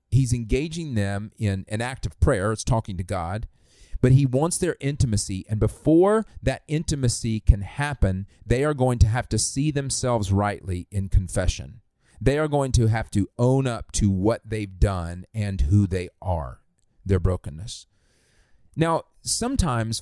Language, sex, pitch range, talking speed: English, male, 100-130 Hz, 160 wpm